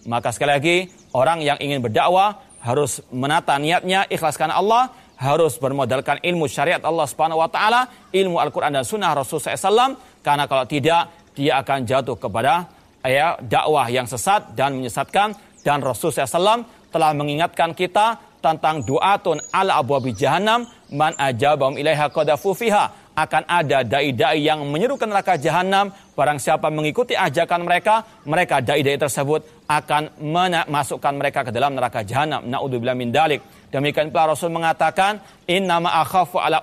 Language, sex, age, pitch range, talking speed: Indonesian, male, 40-59, 145-180 Hz, 145 wpm